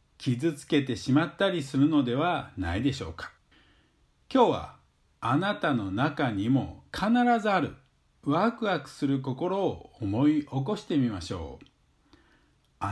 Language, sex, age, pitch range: Japanese, male, 50-69, 120-180 Hz